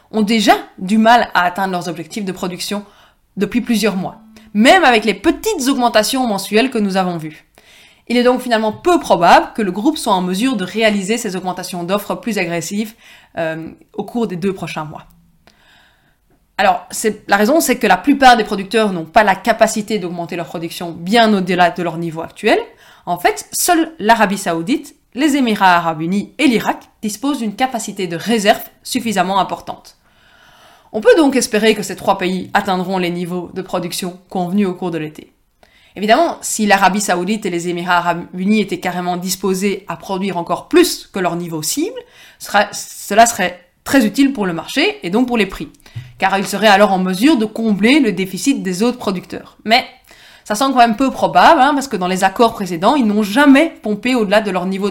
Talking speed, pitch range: 190 wpm, 180-240 Hz